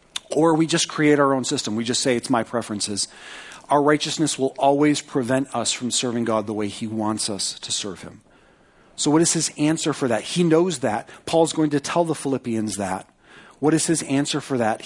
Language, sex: English, male